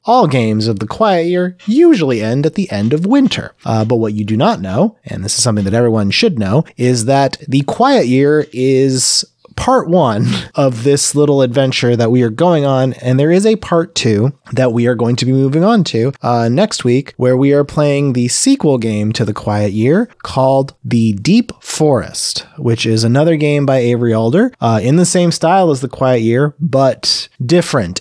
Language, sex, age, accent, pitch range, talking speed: English, male, 30-49, American, 120-160 Hz, 205 wpm